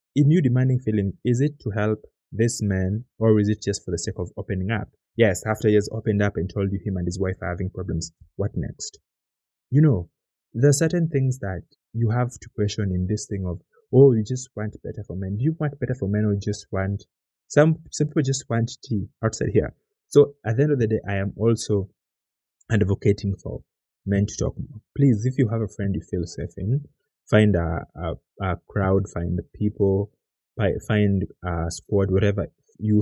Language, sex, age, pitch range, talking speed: English, male, 20-39, 95-115 Hz, 215 wpm